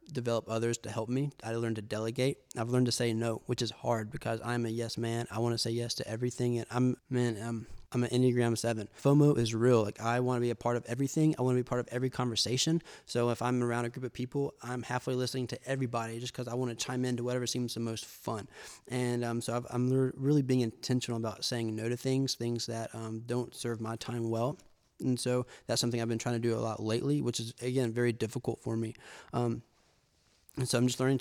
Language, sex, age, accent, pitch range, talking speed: English, male, 20-39, American, 115-125 Hz, 245 wpm